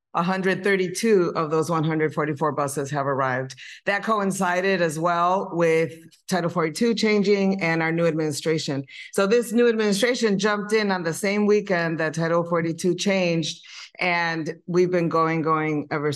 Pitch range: 155-185 Hz